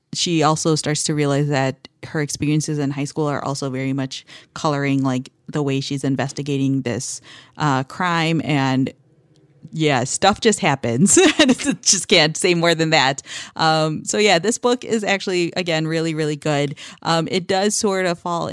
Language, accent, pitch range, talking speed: English, American, 140-170 Hz, 170 wpm